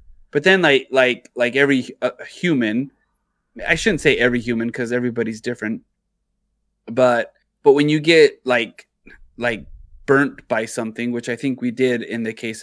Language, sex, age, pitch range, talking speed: English, male, 20-39, 120-140 Hz, 155 wpm